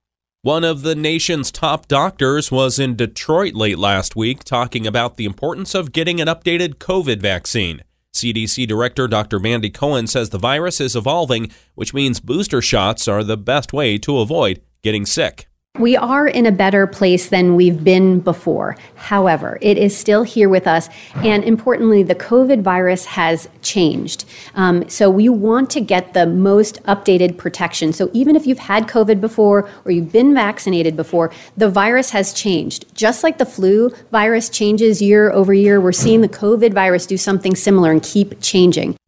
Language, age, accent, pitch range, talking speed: English, 30-49, American, 115-195 Hz, 175 wpm